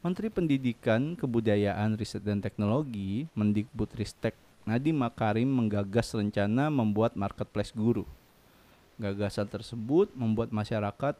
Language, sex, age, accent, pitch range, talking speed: Indonesian, male, 20-39, native, 105-135 Hz, 100 wpm